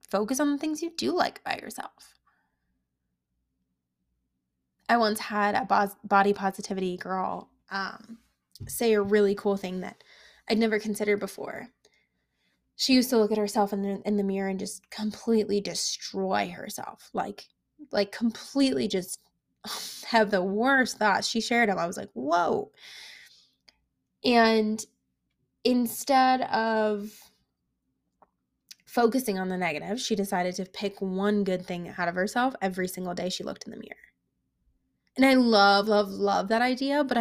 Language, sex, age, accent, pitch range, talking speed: English, female, 10-29, American, 190-230 Hz, 145 wpm